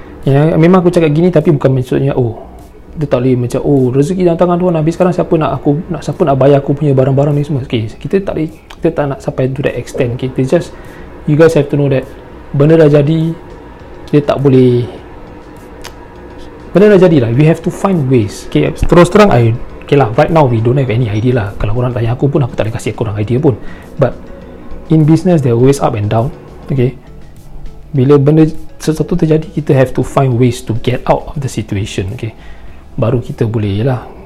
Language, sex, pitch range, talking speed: Malay, male, 115-150 Hz, 210 wpm